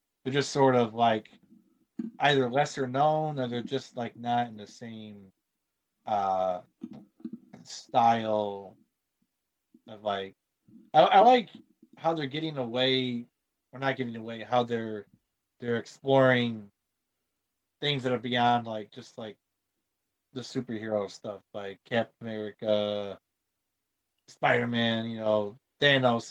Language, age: English, 30-49